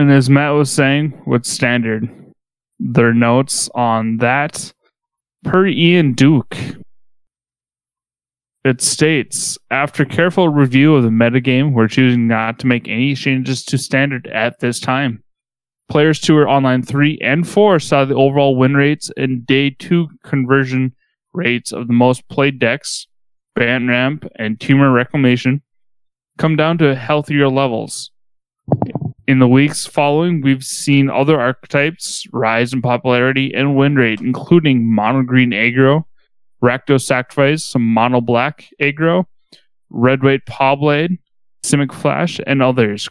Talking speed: 130 wpm